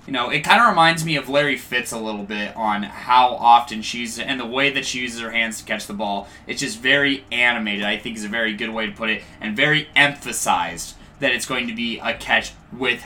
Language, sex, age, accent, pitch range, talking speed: English, male, 20-39, American, 115-145 Hz, 255 wpm